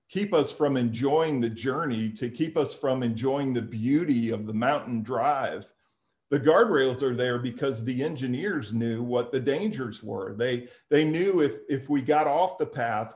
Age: 50-69